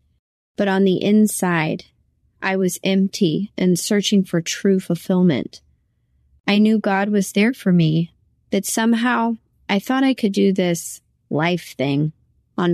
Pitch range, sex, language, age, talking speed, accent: 165-200 Hz, female, English, 30-49, 140 wpm, American